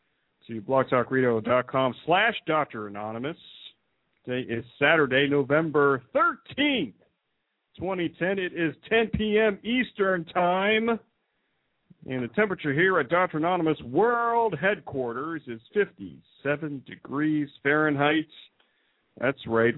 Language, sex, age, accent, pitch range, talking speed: English, male, 50-69, American, 120-180 Hz, 95 wpm